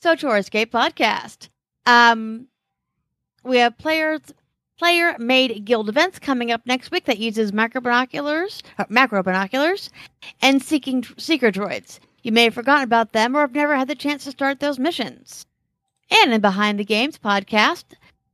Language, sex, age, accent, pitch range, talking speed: English, female, 40-59, American, 210-265 Hz, 145 wpm